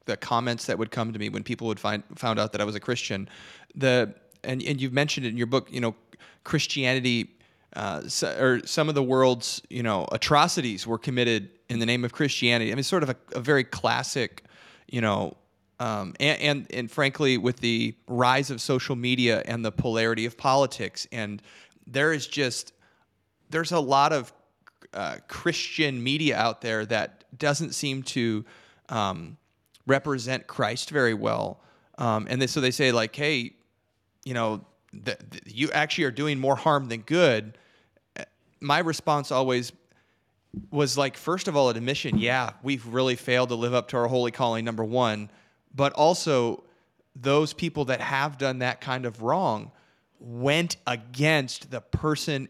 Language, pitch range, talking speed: English, 115-145 Hz, 170 wpm